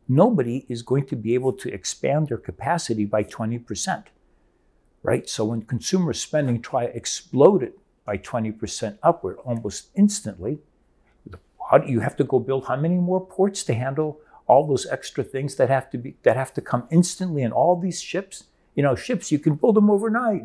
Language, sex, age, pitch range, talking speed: English, male, 60-79, 105-145 Hz, 195 wpm